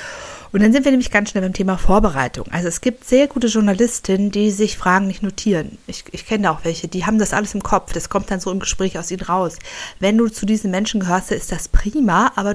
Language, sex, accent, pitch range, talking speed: German, female, German, 170-210 Hz, 250 wpm